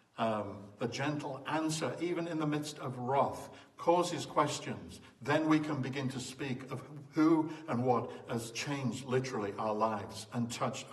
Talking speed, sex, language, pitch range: 160 wpm, male, English, 120-150 Hz